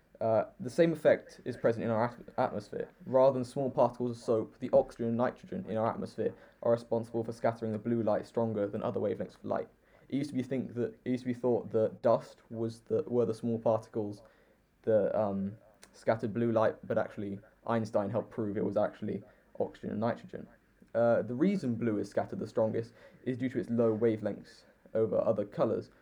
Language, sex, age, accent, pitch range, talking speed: English, male, 20-39, British, 110-120 Hz, 205 wpm